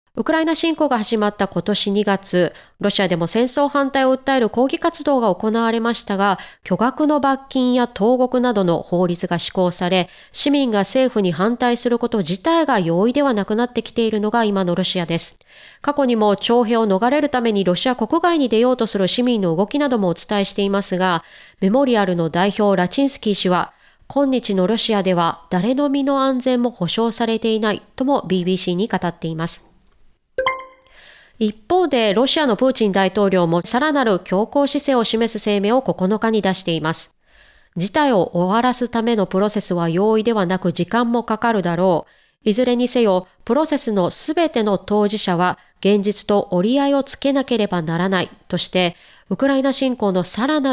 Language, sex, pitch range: Japanese, female, 185-255 Hz